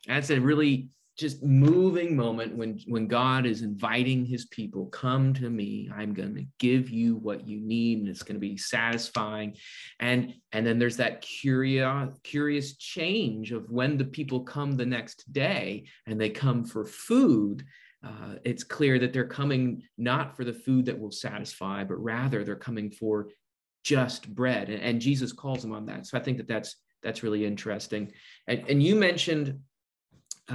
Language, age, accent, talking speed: English, 30-49, American, 180 wpm